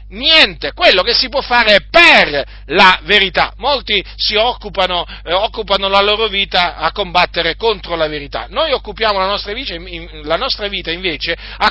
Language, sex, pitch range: Italian, male, 185-255 Hz